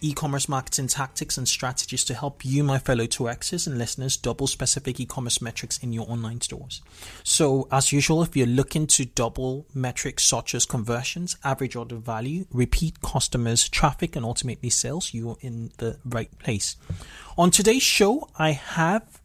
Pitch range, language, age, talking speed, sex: 120-155 Hz, English, 30-49, 160 wpm, male